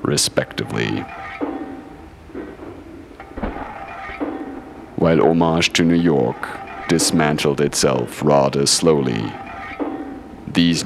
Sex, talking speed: male, 60 wpm